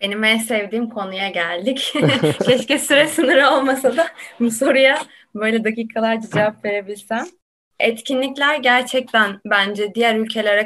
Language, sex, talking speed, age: Turkish, female, 120 wpm, 20-39